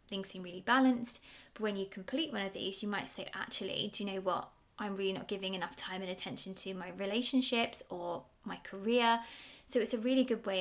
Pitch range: 195-235 Hz